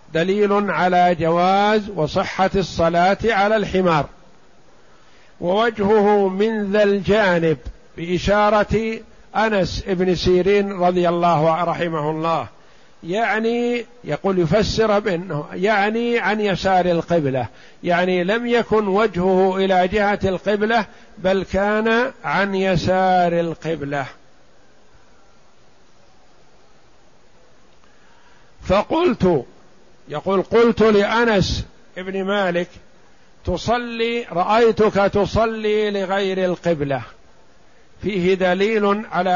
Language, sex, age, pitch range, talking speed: Arabic, male, 50-69, 180-210 Hz, 80 wpm